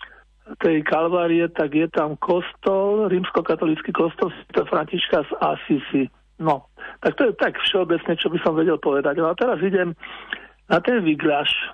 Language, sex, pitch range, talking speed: Slovak, male, 160-195 Hz, 150 wpm